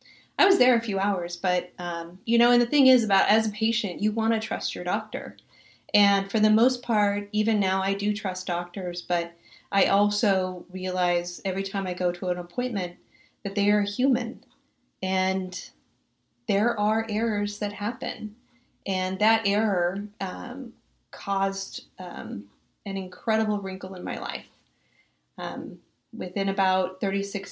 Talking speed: 155 wpm